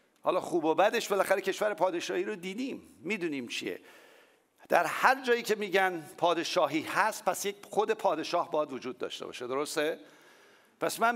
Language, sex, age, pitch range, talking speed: English, male, 50-69, 170-230 Hz, 155 wpm